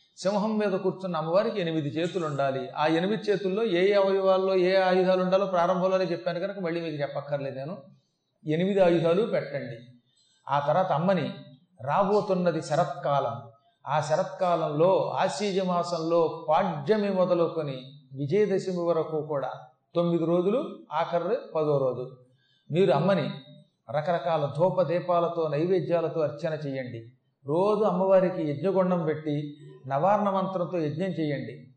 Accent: native